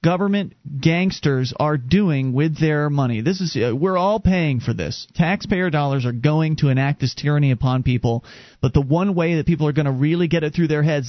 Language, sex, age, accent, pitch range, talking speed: English, male, 30-49, American, 130-180 Hz, 215 wpm